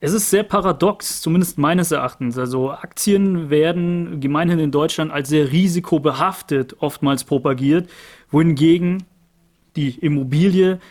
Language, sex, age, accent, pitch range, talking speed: German, male, 30-49, German, 150-175 Hz, 115 wpm